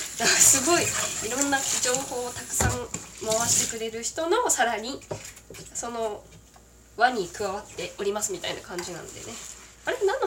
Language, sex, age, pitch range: Japanese, female, 20-39, 195-245 Hz